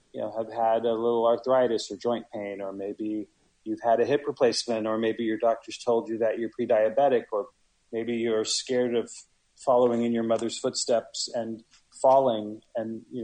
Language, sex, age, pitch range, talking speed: English, male, 30-49, 110-120 Hz, 180 wpm